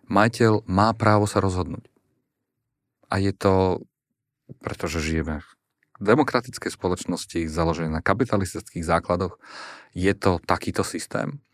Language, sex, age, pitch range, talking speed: Slovak, male, 40-59, 85-100 Hz, 110 wpm